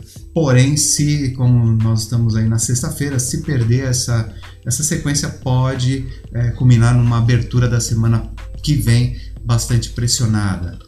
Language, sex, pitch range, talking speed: Portuguese, male, 105-125 Hz, 130 wpm